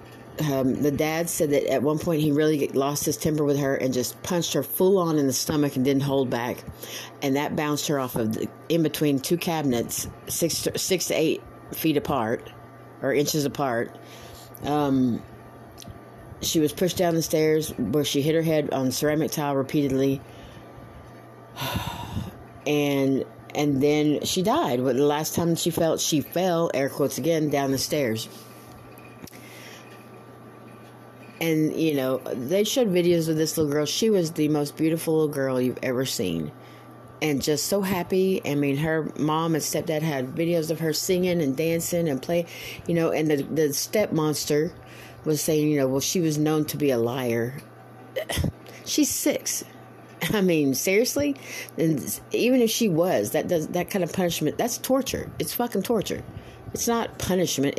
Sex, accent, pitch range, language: female, American, 130-165 Hz, English